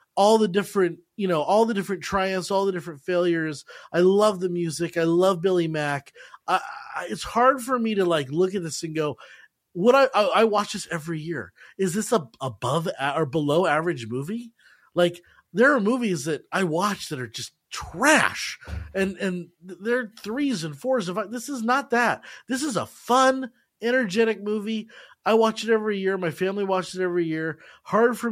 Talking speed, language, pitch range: 195 wpm, English, 165-220 Hz